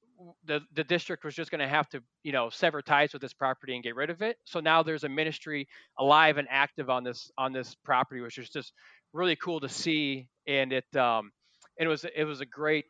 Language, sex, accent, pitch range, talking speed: English, male, American, 130-160 Hz, 235 wpm